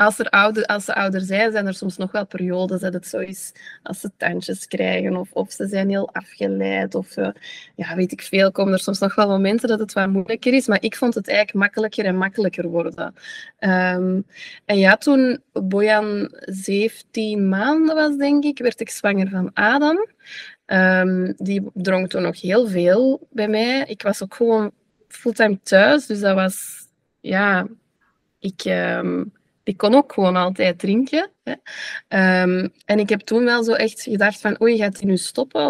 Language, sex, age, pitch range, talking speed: Dutch, female, 20-39, 190-235 Hz, 185 wpm